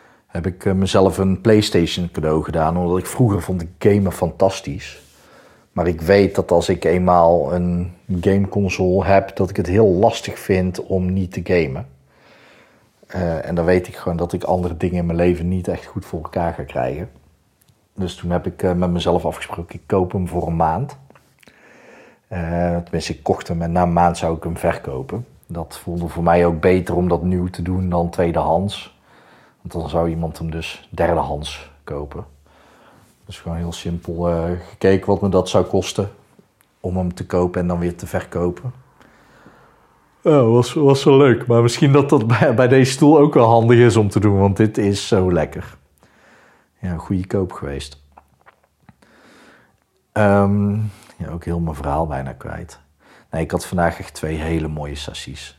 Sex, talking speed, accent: male, 185 wpm, Dutch